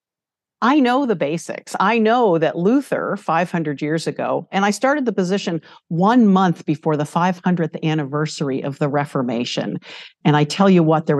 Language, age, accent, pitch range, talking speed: English, 50-69, American, 155-195 Hz, 165 wpm